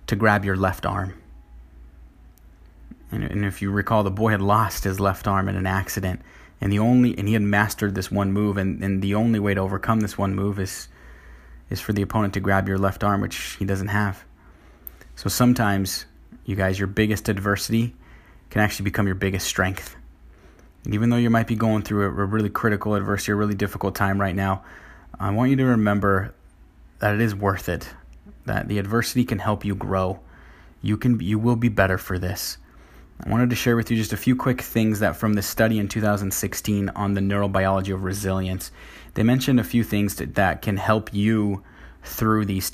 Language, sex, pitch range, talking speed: English, male, 95-105 Hz, 210 wpm